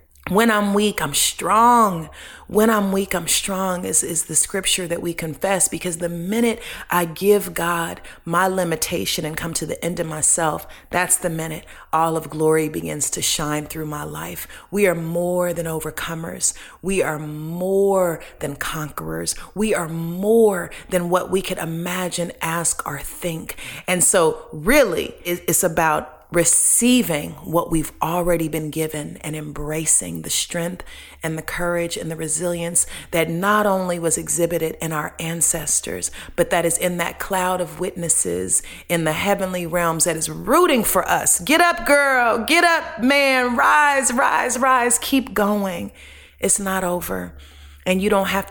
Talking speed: 160 wpm